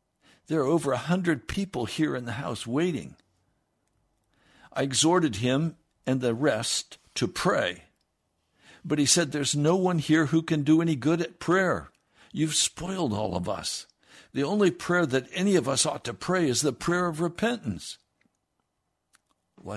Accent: American